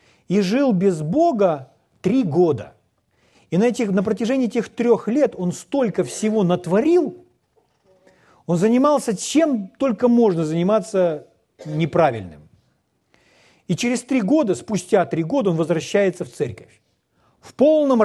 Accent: native